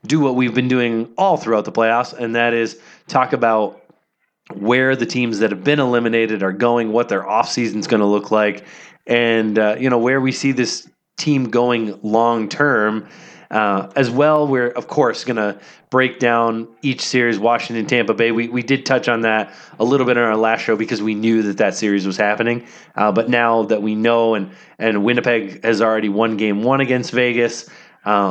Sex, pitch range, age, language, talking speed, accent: male, 105-130 Hz, 20-39, English, 200 wpm, American